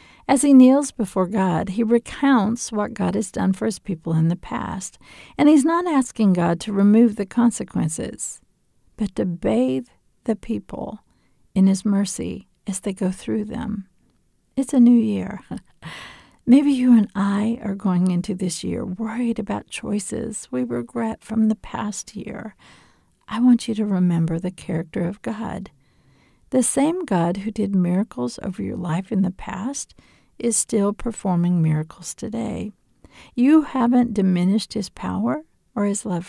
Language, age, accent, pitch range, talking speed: English, 50-69, American, 185-235 Hz, 155 wpm